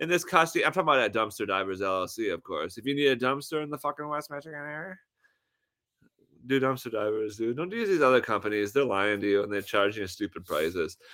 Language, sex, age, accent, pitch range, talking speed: English, male, 30-49, American, 105-145 Hz, 225 wpm